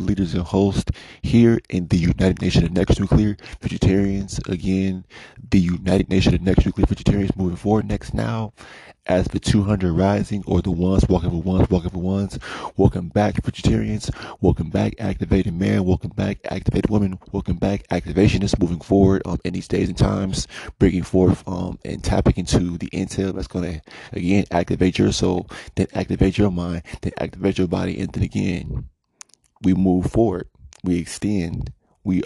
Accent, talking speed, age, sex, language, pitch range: American, 165 wpm, 20-39, male, English, 90-100 Hz